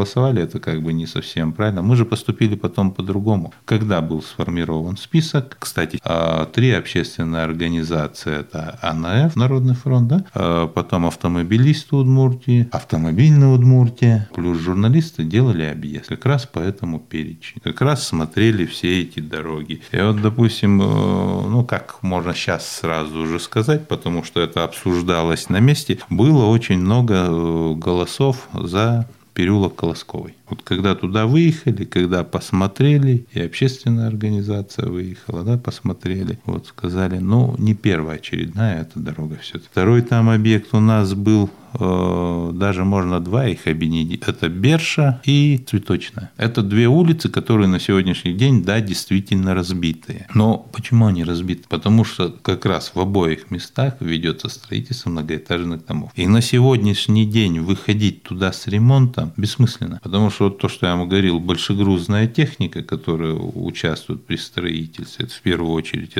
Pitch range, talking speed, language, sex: 85-120 Hz, 140 wpm, Russian, male